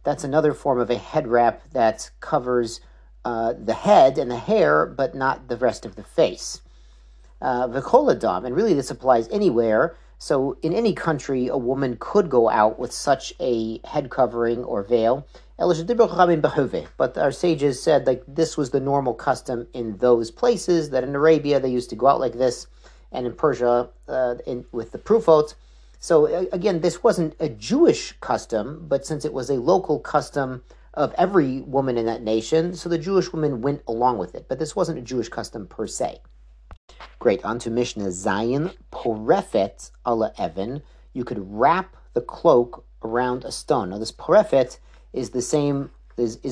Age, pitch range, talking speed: 40-59, 115-150 Hz, 175 wpm